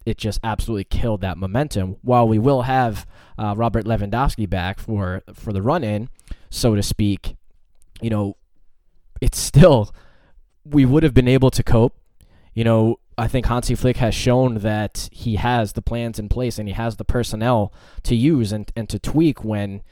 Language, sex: English, male